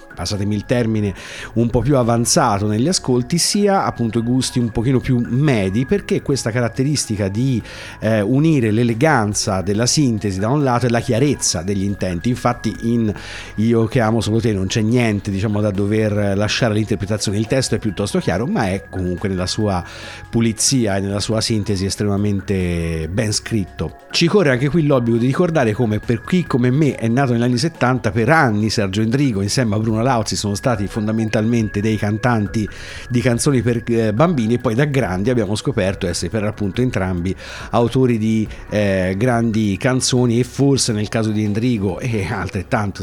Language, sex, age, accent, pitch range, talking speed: Italian, male, 50-69, native, 100-125 Hz, 175 wpm